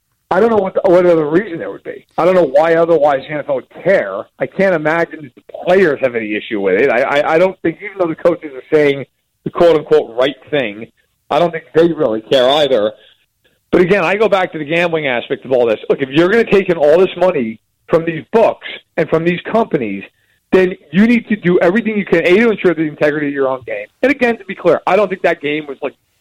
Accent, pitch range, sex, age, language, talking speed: American, 160-220 Hz, male, 40-59, English, 255 wpm